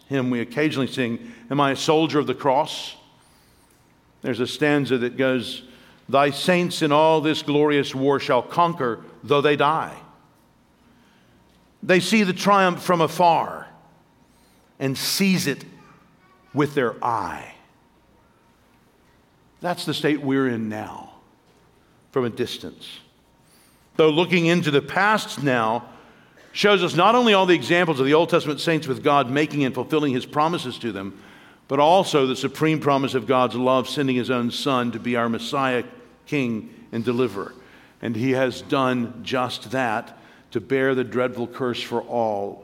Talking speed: 150 wpm